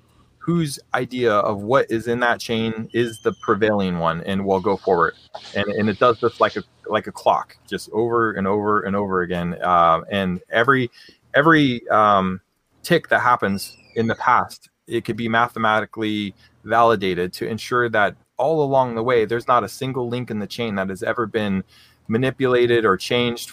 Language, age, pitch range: English, 30-49, 95-120 Hz